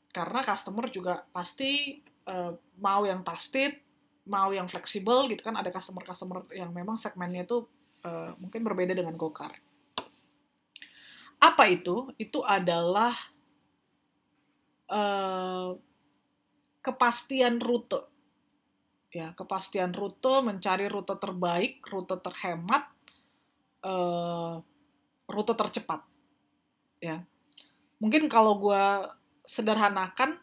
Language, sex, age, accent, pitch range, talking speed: Indonesian, female, 20-39, native, 180-240 Hz, 95 wpm